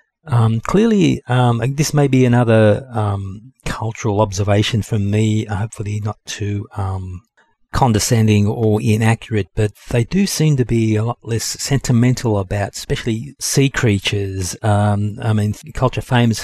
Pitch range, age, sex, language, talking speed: 105-120 Hz, 40-59, male, English, 140 wpm